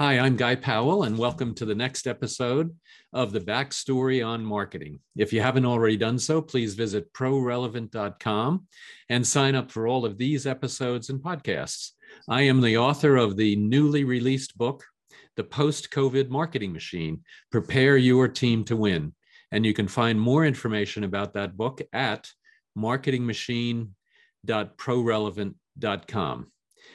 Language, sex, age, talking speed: English, male, 50-69, 140 wpm